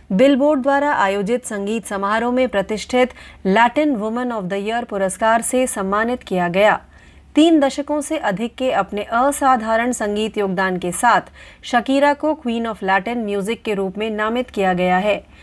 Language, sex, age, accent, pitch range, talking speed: Marathi, female, 30-49, native, 200-265 Hz, 160 wpm